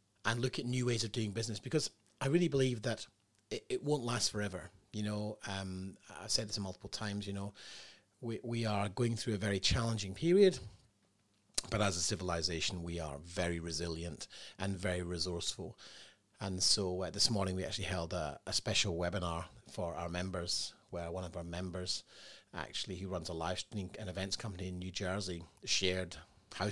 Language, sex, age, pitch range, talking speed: English, male, 30-49, 90-105 Hz, 185 wpm